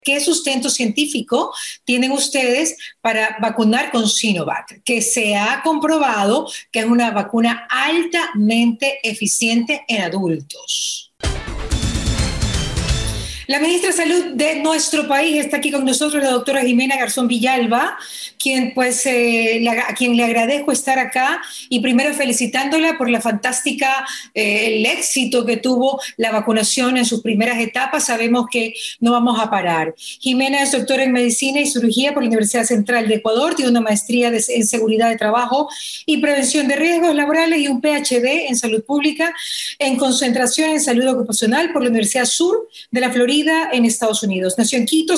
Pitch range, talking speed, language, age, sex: 235-290 Hz, 160 wpm, Spanish, 40-59, female